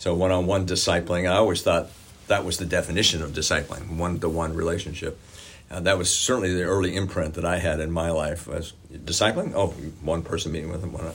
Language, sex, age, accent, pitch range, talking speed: English, male, 50-69, American, 80-95 Hz, 195 wpm